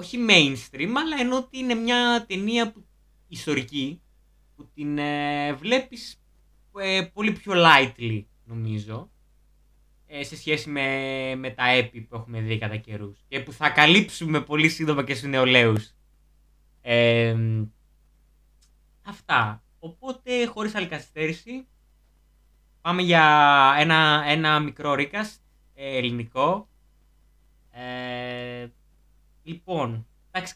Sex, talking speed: male, 110 wpm